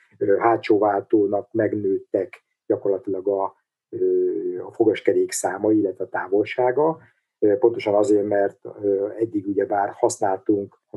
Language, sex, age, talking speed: Hungarian, male, 50-69, 95 wpm